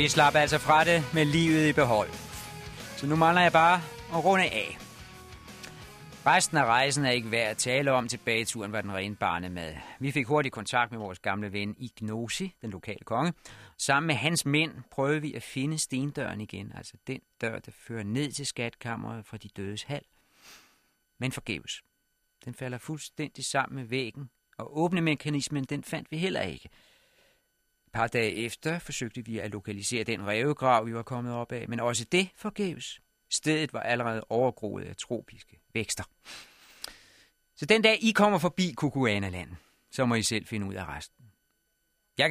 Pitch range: 110-155 Hz